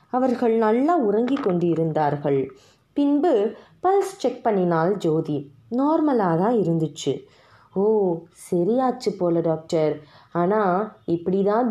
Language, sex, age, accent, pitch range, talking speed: Tamil, female, 20-39, native, 165-240 Hz, 95 wpm